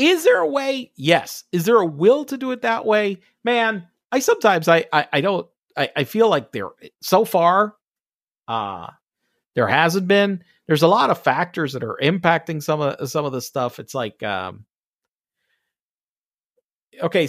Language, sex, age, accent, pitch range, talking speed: English, male, 40-59, American, 130-205 Hz, 175 wpm